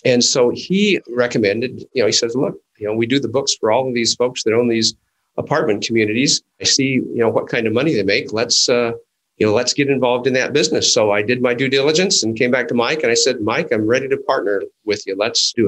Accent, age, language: American, 50-69, English